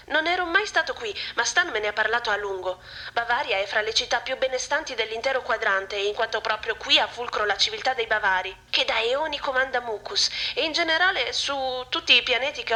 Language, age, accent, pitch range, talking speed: Italian, 30-49, native, 215-285 Hz, 210 wpm